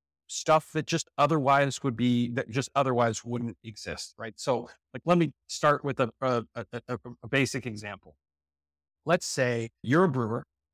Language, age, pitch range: English, 30-49, 115-155 Hz